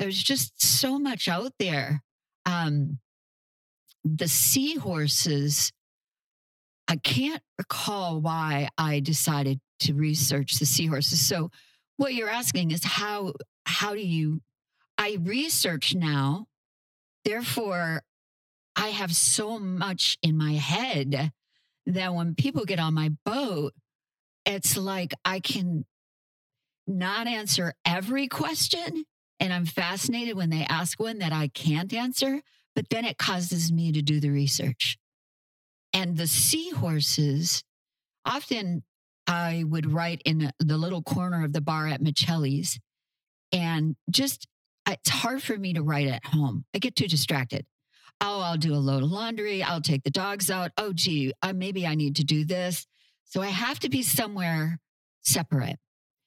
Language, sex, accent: English, female, American